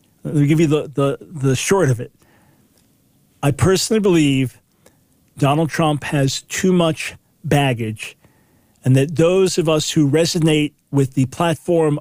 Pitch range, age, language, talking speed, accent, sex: 140-175 Hz, 40-59, English, 140 wpm, American, male